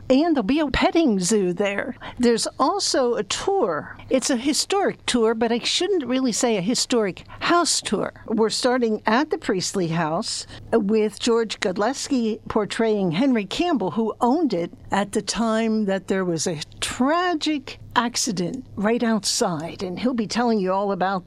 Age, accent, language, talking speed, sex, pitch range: 60-79, American, English, 160 wpm, female, 200-260 Hz